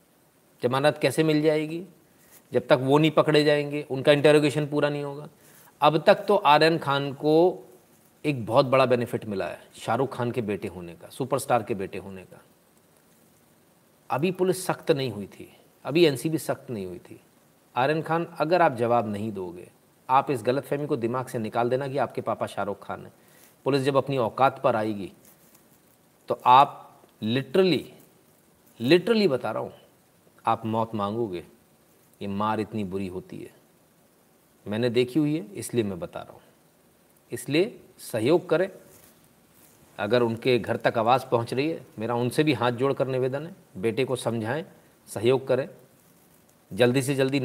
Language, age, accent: Hindi, 40-59, native